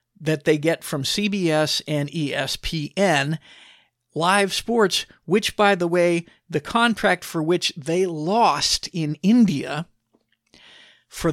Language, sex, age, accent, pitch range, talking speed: English, male, 50-69, American, 155-185 Hz, 115 wpm